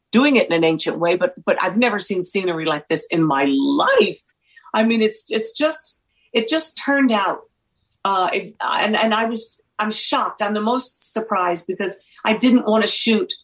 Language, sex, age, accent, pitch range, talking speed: English, female, 50-69, American, 165-215 Hz, 195 wpm